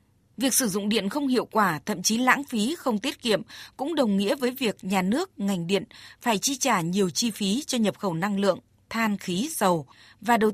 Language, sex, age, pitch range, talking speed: Vietnamese, female, 20-39, 190-250 Hz, 220 wpm